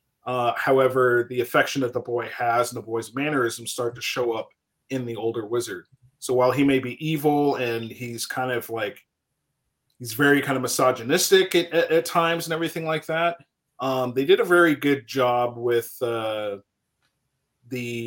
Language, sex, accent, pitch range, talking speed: English, male, American, 115-135 Hz, 180 wpm